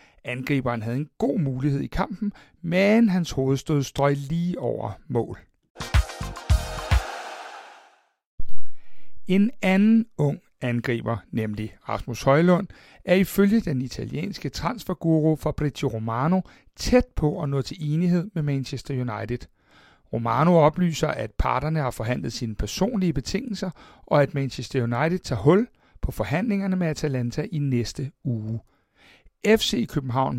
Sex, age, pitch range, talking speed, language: male, 60-79, 130-185 Hz, 125 wpm, Danish